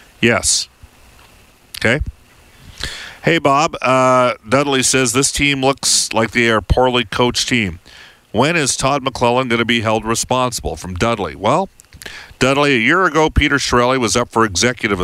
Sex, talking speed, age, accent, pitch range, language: male, 155 wpm, 50-69, American, 105-130 Hz, English